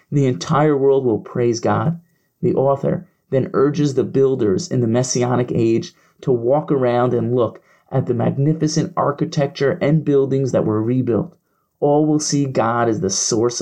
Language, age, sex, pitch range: English, 30-49, male, 125-155 Hz